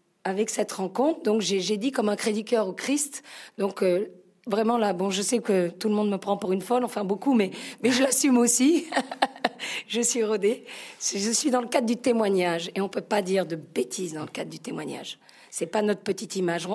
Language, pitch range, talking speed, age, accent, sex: French, 195-240 Hz, 230 wpm, 40-59, French, female